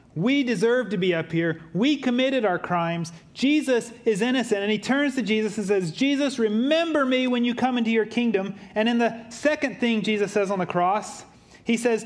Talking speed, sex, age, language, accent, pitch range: 205 wpm, male, 30-49, English, American, 135-225 Hz